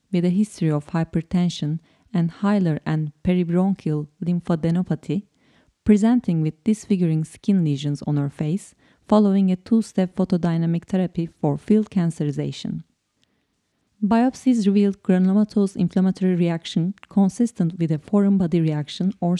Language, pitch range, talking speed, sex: English, 155-190 Hz, 120 wpm, female